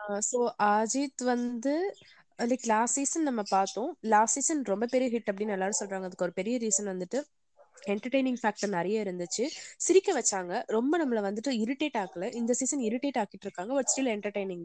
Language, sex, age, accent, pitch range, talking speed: Tamil, female, 20-39, native, 210-275 Hz, 60 wpm